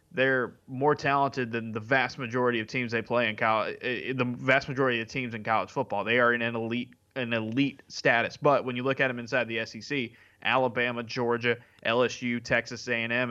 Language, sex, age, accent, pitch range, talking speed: English, male, 20-39, American, 115-135 Hz, 200 wpm